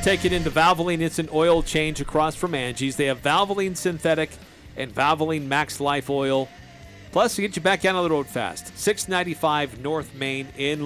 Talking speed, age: 190 wpm, 40-59